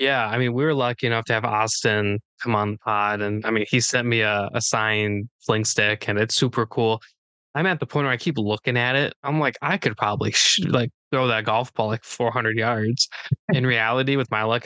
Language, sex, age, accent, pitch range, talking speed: English, male, 20-39, American, 110-125 Hz, 235 wpm